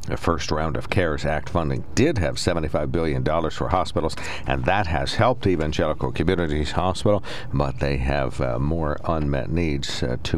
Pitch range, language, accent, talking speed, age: 75-95 Hz, English, American, 170 wpm, 60-79